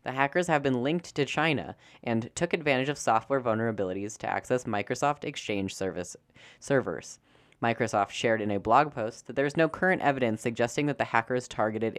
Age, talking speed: 10-29, 180 wpm